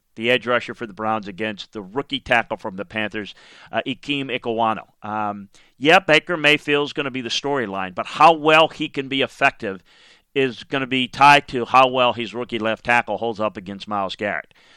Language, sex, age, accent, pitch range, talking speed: English, male, 40-59, American, 110-135 Hz, 200 wpm